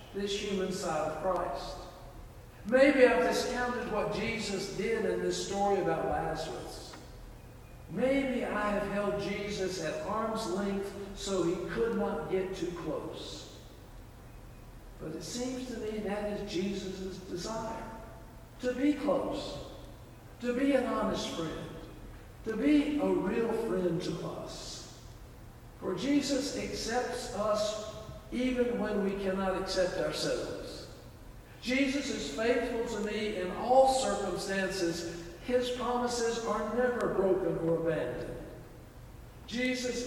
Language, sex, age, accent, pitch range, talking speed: English, male, 60-79, American, 170-225 Hz, 120 wpm